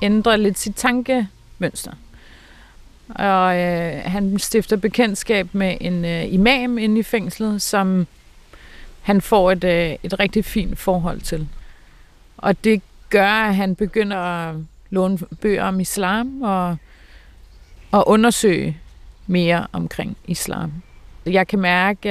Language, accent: Danish, native